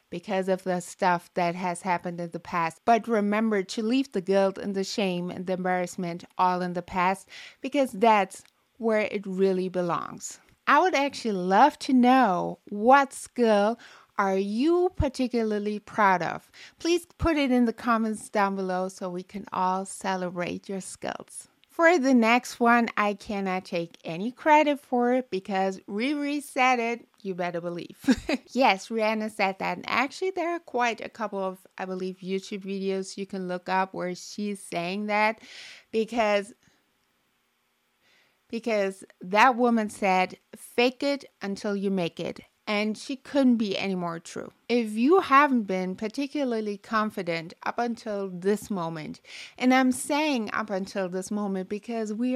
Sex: female